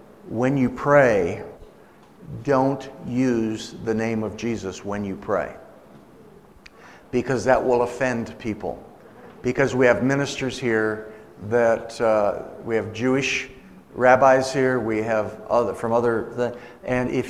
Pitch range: 110-130 Hz